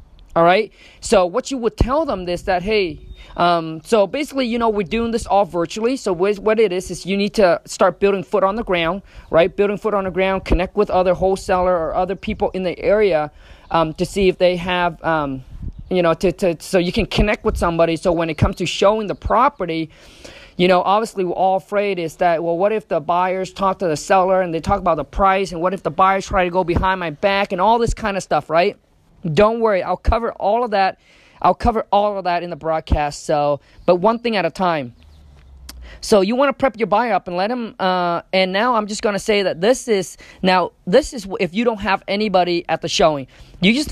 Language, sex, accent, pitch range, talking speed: English, male, American, 175-210 Hz, 240 wpm